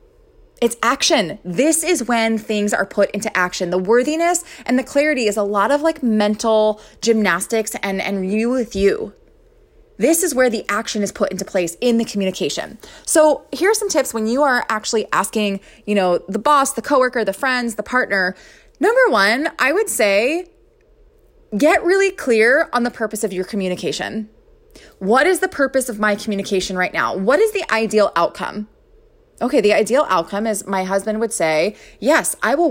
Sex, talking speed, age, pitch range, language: female, 180 wpm, 20-39, 200-295 Hz, English